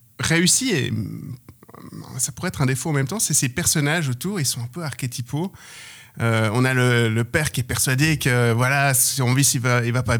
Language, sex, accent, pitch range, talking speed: French, male, French, 125-155 Hz, 225 wpm